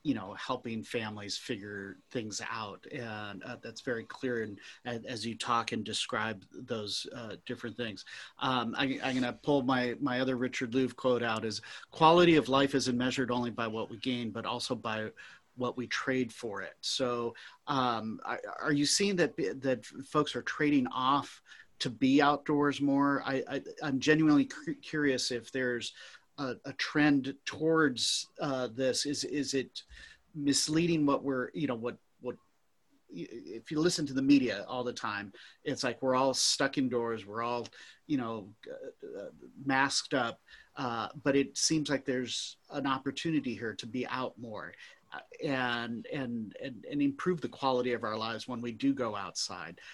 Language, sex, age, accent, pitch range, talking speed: English, male, 40-59, American, 120-145 Hz, 170 wpm